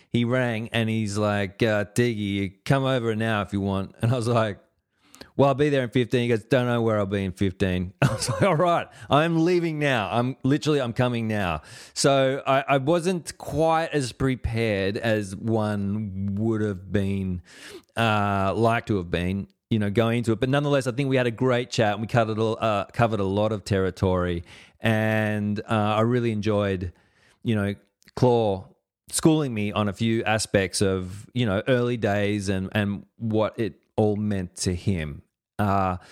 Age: 30-49